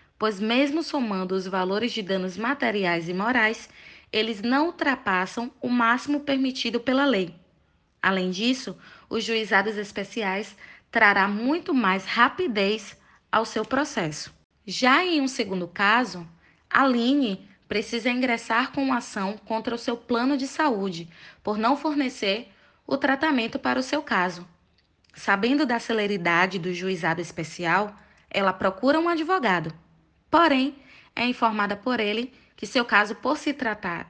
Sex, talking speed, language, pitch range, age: female, 135 wpm, Portuguese, 190-255 Hz, 20-39